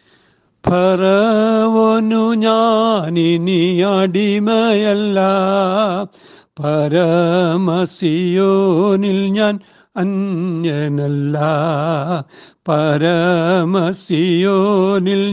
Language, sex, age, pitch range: Malayalam, male, 60-79, 140-175 Hz